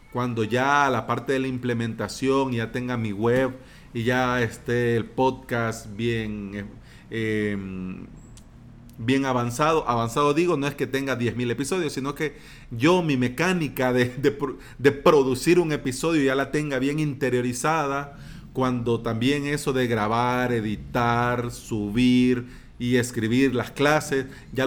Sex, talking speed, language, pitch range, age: male, 135 wpm, Spanish, 120-150 Hz, 40-59